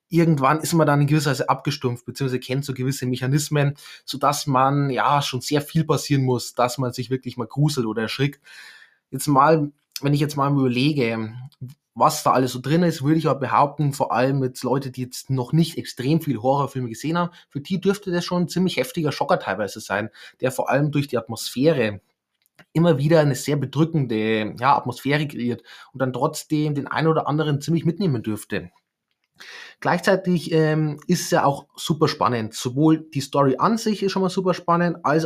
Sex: male